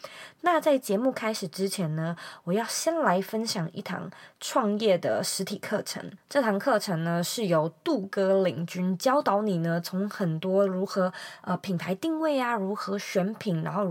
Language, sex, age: Chinese, female, 20-39